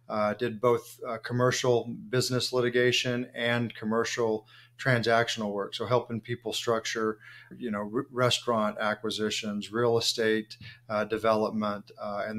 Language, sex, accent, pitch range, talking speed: English, male, American, 110-120 Hz, 125 wpm